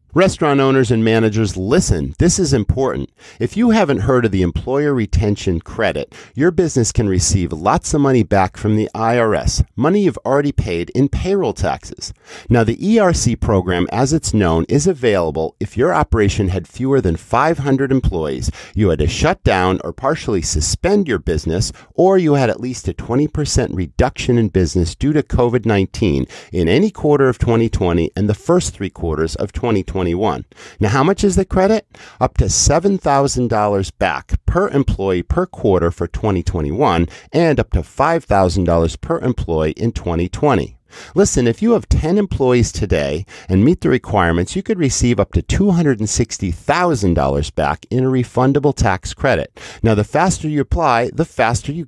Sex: male